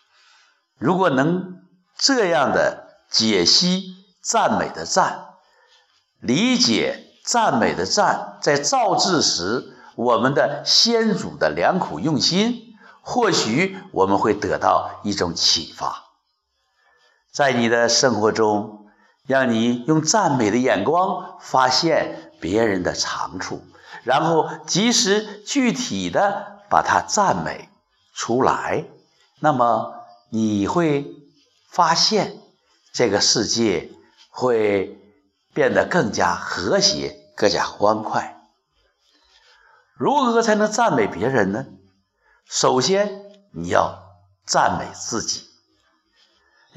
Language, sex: Chinese, male